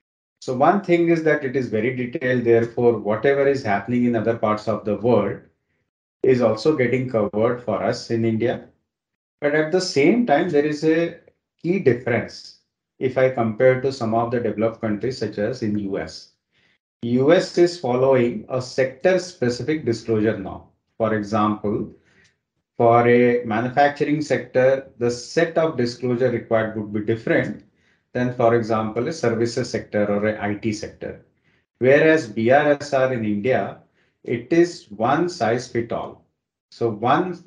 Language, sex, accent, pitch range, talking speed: English, male, Indian, 110-135 Hz, 150 wpm